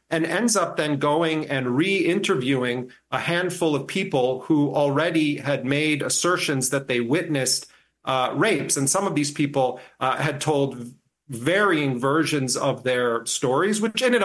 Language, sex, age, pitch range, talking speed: English, male, 40-59, 130-160 Hz, 155 wpm